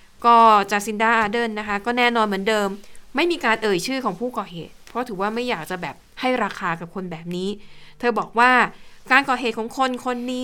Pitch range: 195-240 Hz